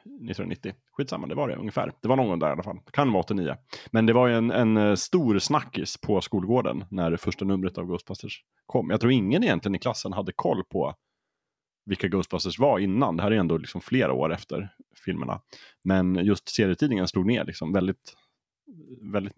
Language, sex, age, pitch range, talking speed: Swedish, male, 30-49, 90-110 Hz, 200 wpm